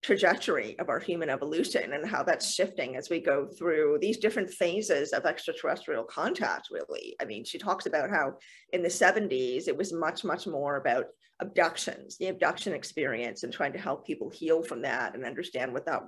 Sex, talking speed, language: female, 190 wpm, English